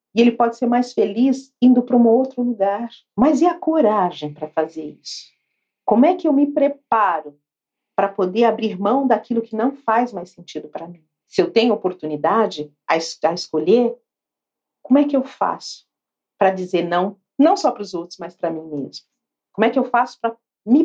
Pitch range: 185-260 Hz